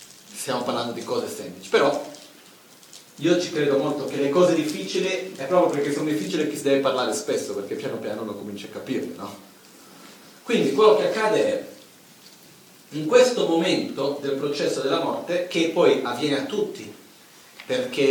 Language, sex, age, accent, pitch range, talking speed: Italian, male, 40-59, native, 140-210 Hz, 165 wpm